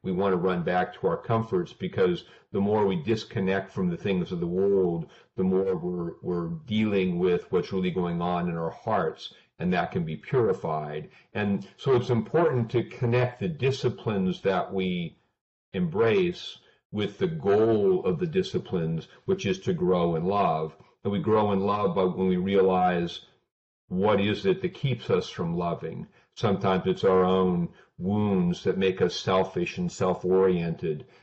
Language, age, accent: English, 50-69, American